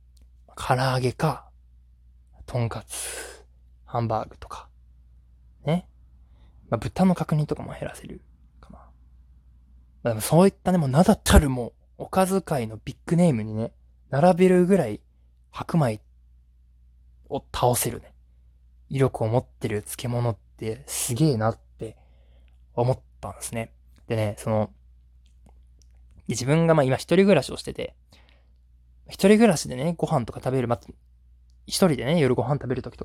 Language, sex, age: Japanese, male, 20-39